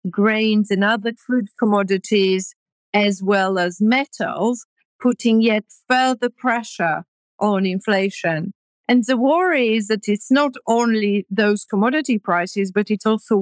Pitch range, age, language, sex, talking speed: 195-235 Hz, 50-69, English, female, 130 wpm